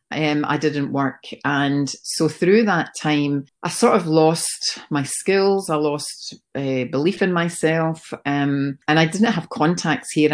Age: 40-59